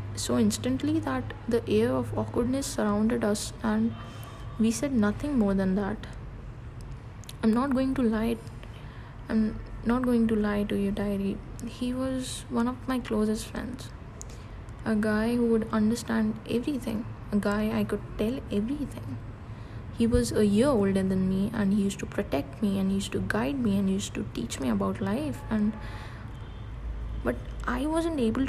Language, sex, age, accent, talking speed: English, female, 20-39, Indian, 170 wpm